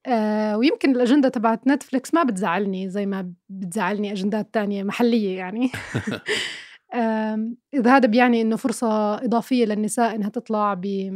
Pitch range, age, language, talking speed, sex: 205-235 Hz, 20-39, Arabic, 120 wpm, female